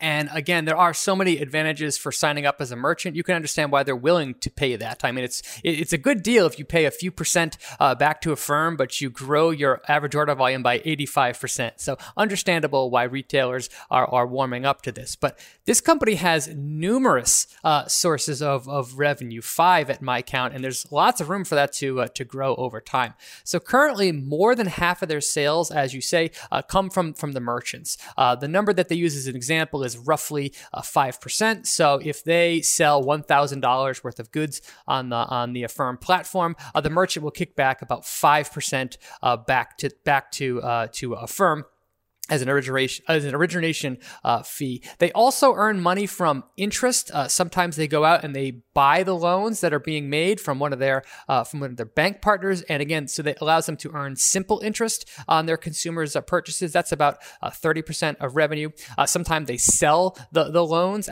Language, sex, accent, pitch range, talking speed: English, male, American, 135-175 Hz, 215 wpm